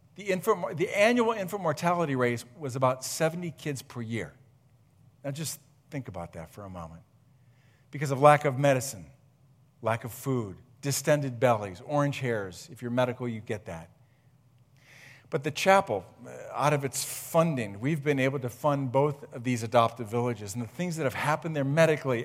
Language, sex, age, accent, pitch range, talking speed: English, male, 50-69, American, 120-140 Hz, 175 wpm